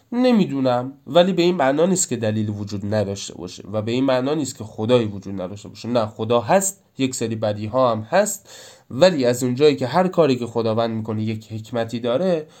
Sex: male